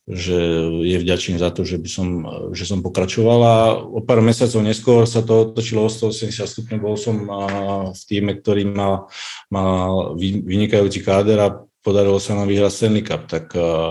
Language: Czech